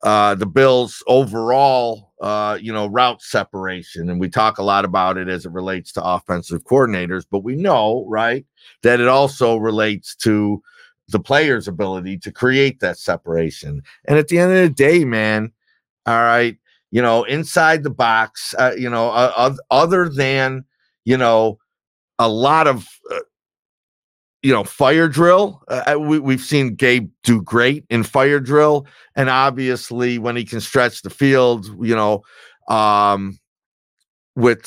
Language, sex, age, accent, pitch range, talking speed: English, male, 50-69, American, 105-135 Hz, 160 wpm